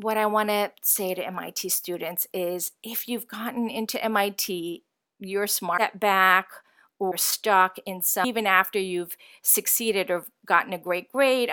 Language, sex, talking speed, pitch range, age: English, female, 155 wpm, 195-255 Hz, 40-59